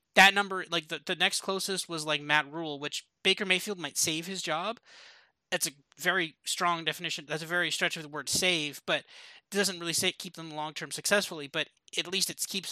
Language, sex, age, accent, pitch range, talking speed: English, male, 20-39, American, 155-185 Hz, 210 wpm